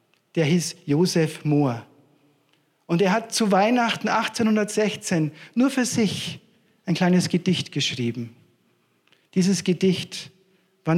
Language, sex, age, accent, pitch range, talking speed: German, male, 50-69, German, 135-185 Hz, 110 wpm